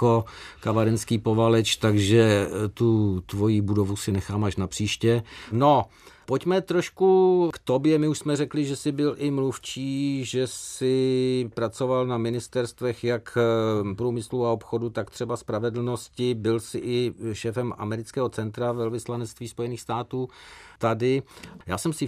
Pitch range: 110-130 Hz